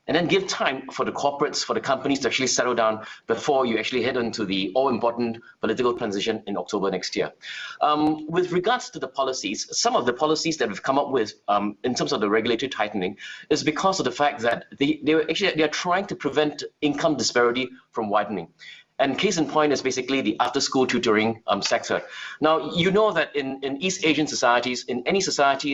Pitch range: 120-165 Hz